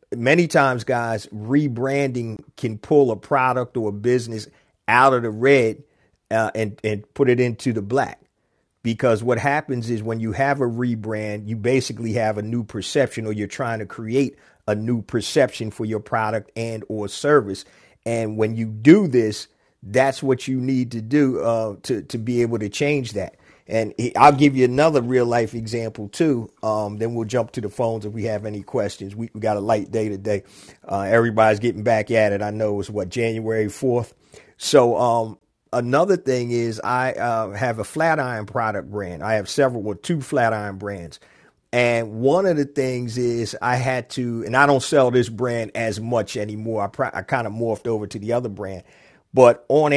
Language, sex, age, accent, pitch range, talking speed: English, male, 40-59, American, 110-130 Hz, 195 wpm